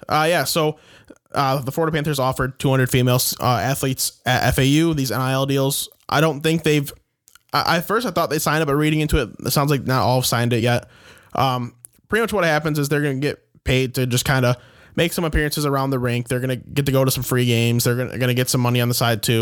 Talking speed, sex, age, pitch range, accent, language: 255 wpm, male, 20-39, 120-145 Hz, American, English